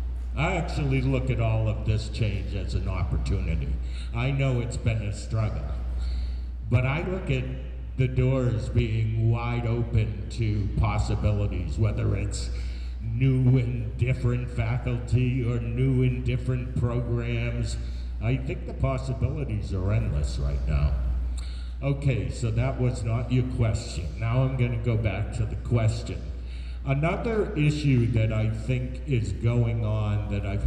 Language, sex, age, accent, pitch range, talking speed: English, male, 50-69, American, 95-125 Hz, 145 wpm